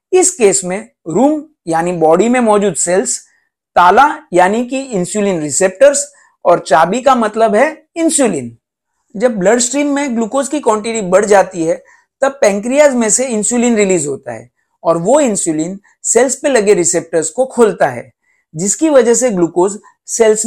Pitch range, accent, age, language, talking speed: 195-280 Hz, native, 50-69, Hindi, 155 wpm